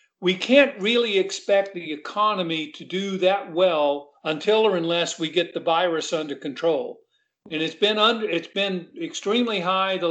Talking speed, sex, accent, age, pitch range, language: 165 wpm, male, American, 50-69, 160-195 Hz, English